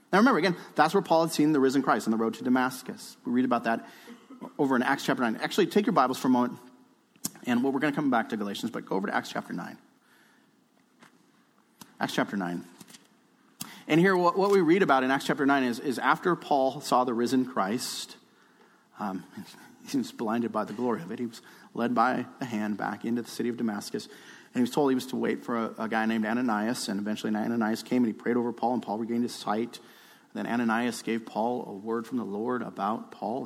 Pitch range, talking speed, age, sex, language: 115-185 Hz, 230 wpm, 30-49, male, English